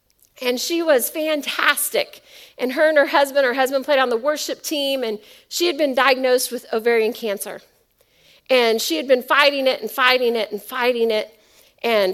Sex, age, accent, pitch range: female, 40-59, American, 215-270 Hz